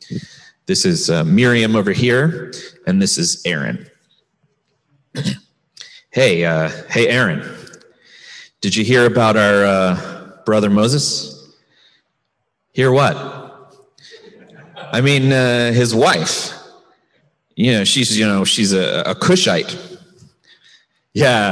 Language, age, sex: English, 30-49, male